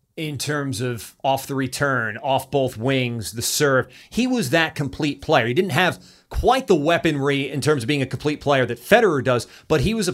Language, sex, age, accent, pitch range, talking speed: English, male, 30-49, American, 125-165 Hz, 215 wpm